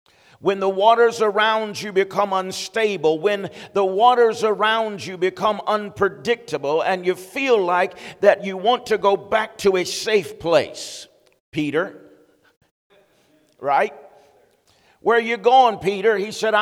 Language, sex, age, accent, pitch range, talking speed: English, male, 50-69, American, 195-230 Hz, 135 wpm